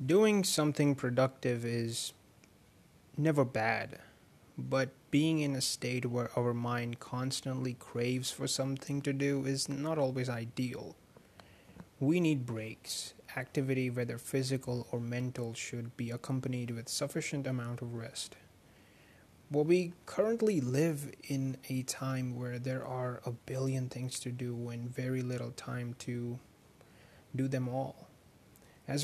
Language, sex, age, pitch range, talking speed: English, male, 20-39, 120-135 Hz, 130 wpm